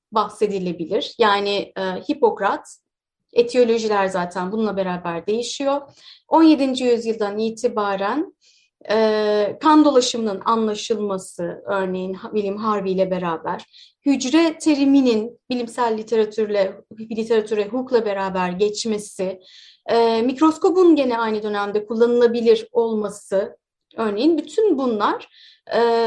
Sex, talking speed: female, 90 wpm